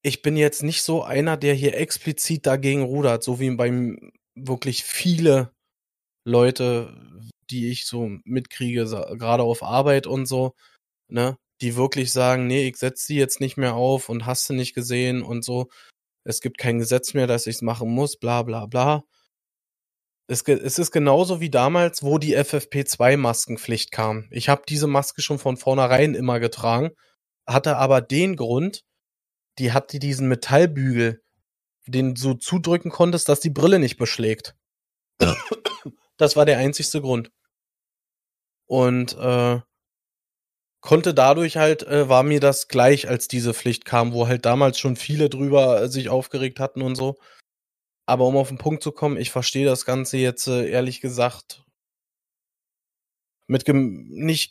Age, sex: 20-39, male